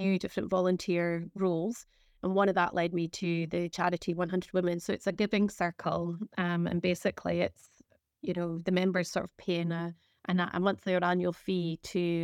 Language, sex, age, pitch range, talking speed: English, female, 30-49, 170-185 Hz, 185 wpm